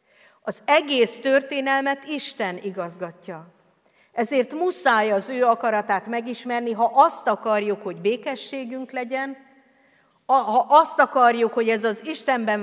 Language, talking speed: Hungarian, 115 wpm